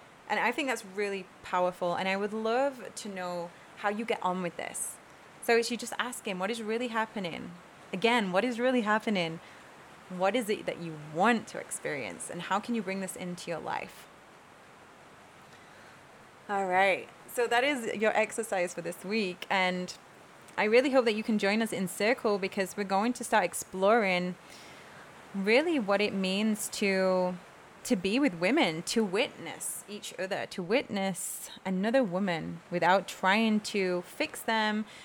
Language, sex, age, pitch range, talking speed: English, female, 20-39, 190-240 Hz, 170 wpm